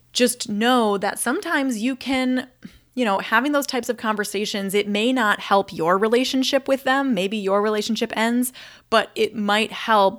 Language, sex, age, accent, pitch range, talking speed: English, female, 20-39, American, 185-235 Hz, 170 wpm